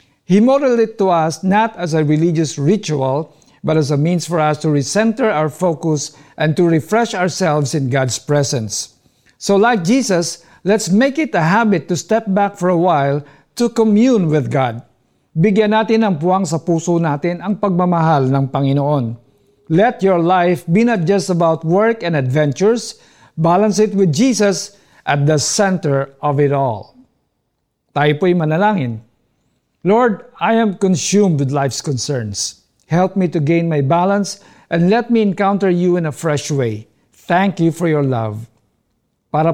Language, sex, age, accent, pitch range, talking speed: Filipino, male, 50-69, native, 140-200 Hz, 160 wpm